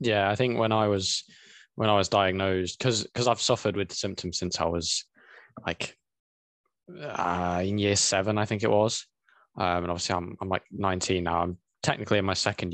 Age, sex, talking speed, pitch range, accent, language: 20-39, male, 195 wpm, 90-105 Hz, British, English